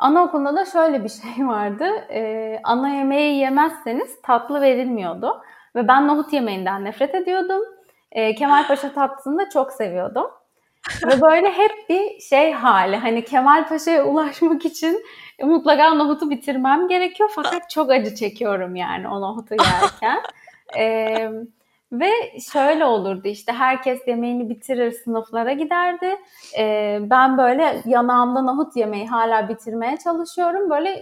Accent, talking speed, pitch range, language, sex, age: native, 130 wpm, 225-315 Hz, Turkish, female, 30-49